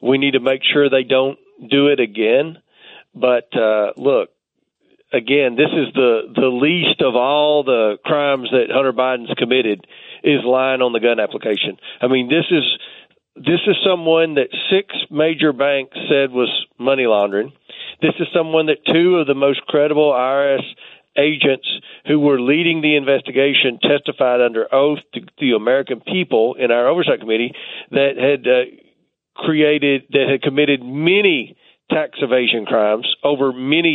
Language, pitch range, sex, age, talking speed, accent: English, 130-165 Hz, male, 40-59, 155 wpm, American